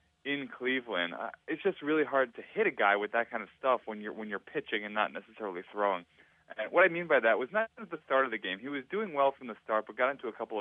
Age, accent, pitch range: 20-39, American, 105-135 Hz